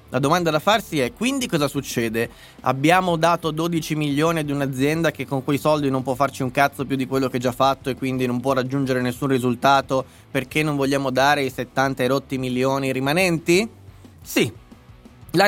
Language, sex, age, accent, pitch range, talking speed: Italian, male, 20-39, native, 125-160 Hz, 185 wpm